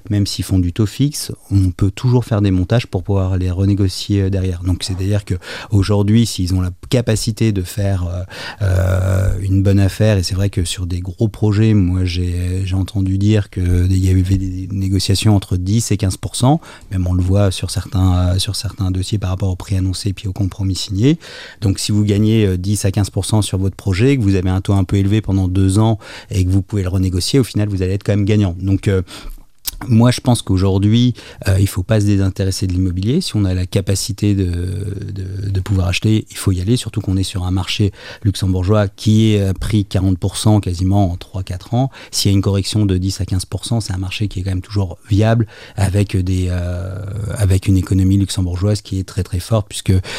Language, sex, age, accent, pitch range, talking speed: French, male, 30-49, French, 95-105 Hz, 210 wpm